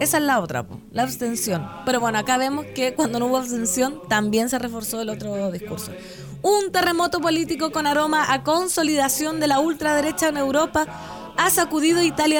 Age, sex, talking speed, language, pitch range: 20-39, female, 175 wpm, Spanish, 245-315 Hz